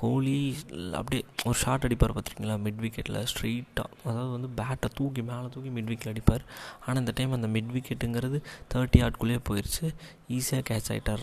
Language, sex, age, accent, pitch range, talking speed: Tamil, male, 20-39, native, 110-125 Hz, 160 wpm